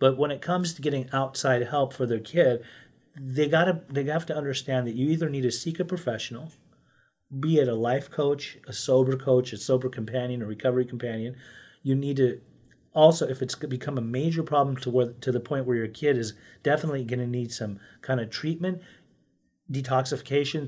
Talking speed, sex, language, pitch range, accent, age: 190 wpm, male, English, 125-150 Hz, American, 30-49